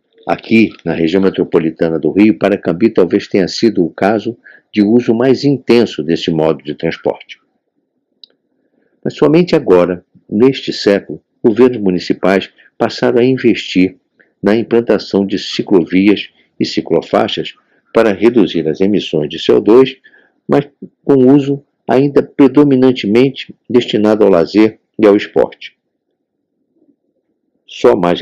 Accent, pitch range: Brazilian, 90-125 Hz